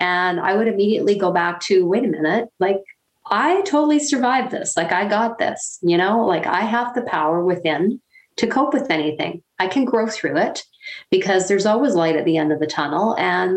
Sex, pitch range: female, 165-225 Hz